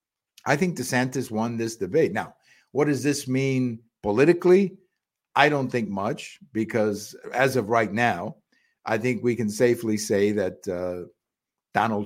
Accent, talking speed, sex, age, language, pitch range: American, 150 wpm, male, 50-69, English, 100-125 Hz